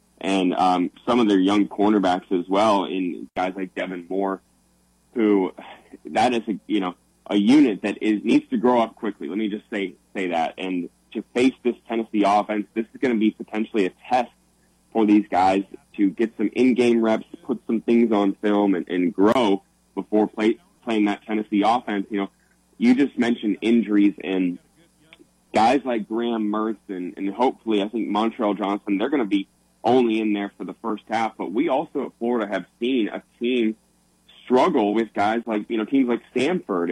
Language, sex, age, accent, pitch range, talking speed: English, male, 20-39, American, 100-120 Hz, 195 wpm